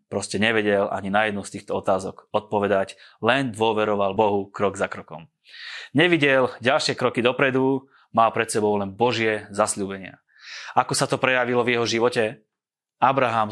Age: 20-39